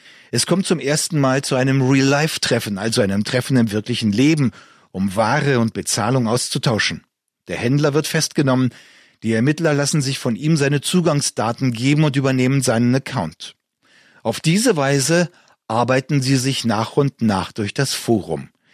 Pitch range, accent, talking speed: 120-155 Hz, German, 155 wpm